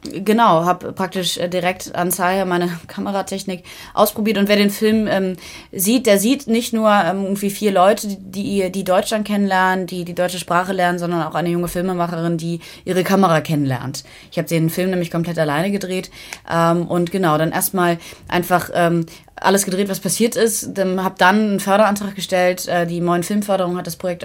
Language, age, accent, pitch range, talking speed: German, 20-39, German, 170-195 Hz, 180 wpm